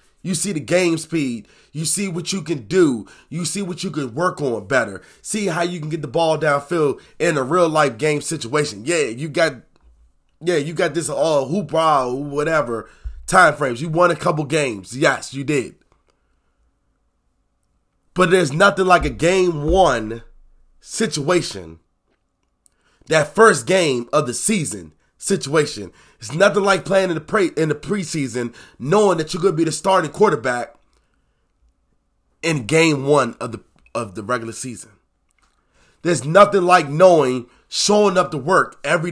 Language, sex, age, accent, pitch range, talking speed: English, male, 20-39, American, 125-175 Hz, 160 wpm